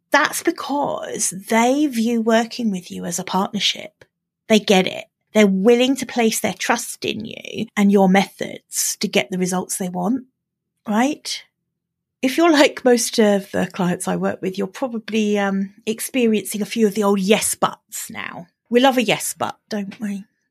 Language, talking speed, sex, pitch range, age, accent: English, 175 wpm, female, 195-250 Hz, 30-49, British